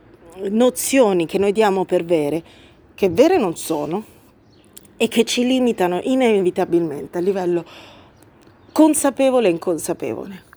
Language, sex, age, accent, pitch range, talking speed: Italian, female, 30-49, native, 175-220 Hz, 115 wpm